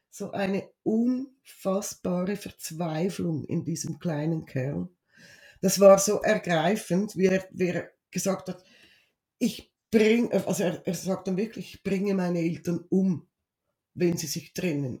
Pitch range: 175-225 Hz